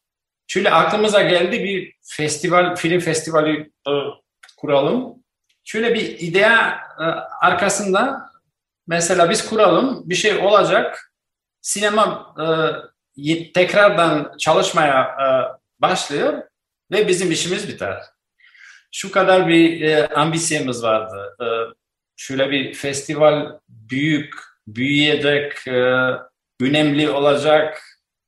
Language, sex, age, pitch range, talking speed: Turkish, male, 50-69, 135-180 Hz, 95 wpm